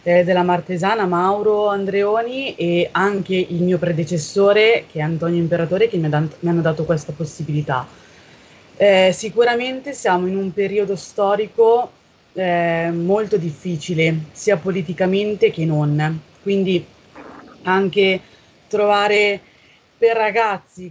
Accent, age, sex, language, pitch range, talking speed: native, 20-39, female, Italian, 170-200 Hz, 120 wpm